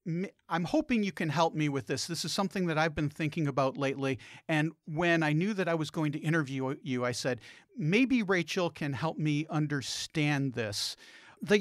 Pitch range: 145-185 Hz